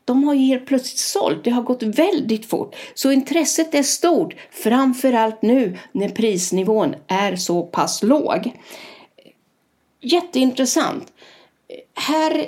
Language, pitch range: Swedish, 225-290 Hz